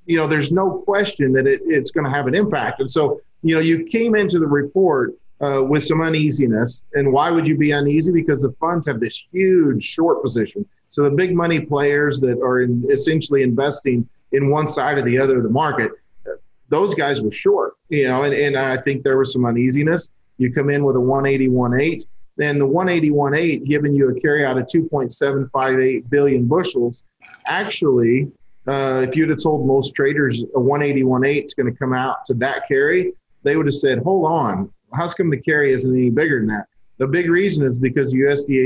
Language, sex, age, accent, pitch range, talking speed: English, male, 40-59, American, 130-160 Hz, 205 wpm